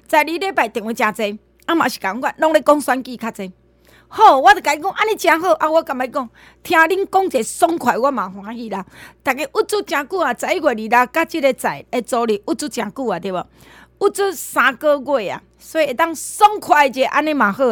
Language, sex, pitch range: Chinese, female, 235-315 Hz